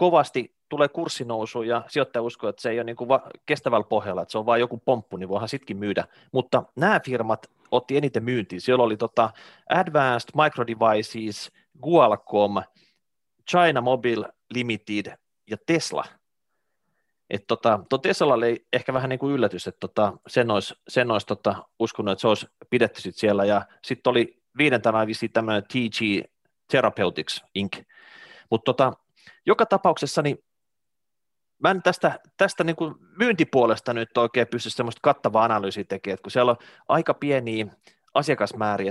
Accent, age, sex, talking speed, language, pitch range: native, 30-49, male, 145 wpm, Finnish, 105-125 Hz